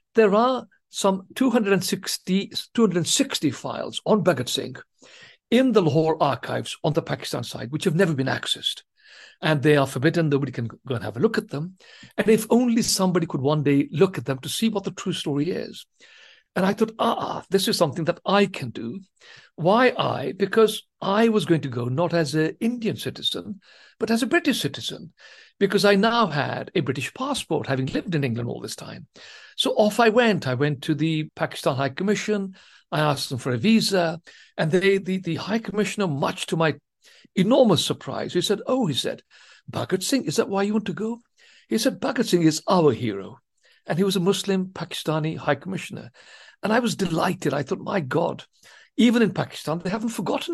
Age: 60-79